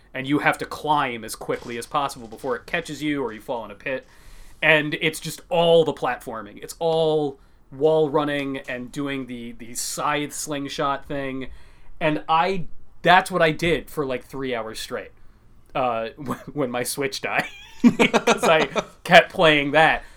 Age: 30-49